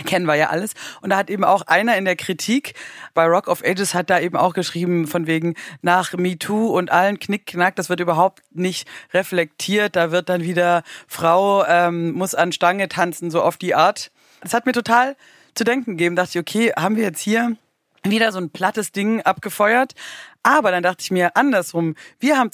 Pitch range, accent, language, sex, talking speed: 175-230 Hz, German, German, female, 205 wpm